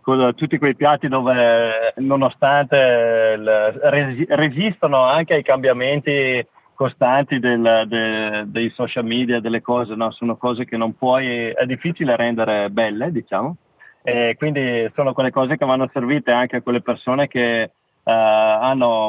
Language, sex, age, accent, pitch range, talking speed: Italian, male, 30-49, native, 115-130 Hz, 135 wpm